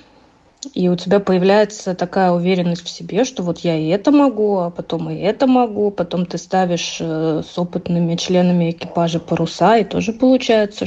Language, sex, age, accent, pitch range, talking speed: Russian, female, 20-39, native, 175-205 Hz, 165 wpm